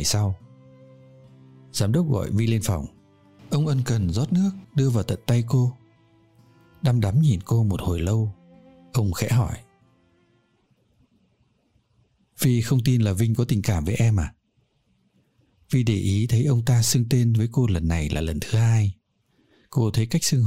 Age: 60-79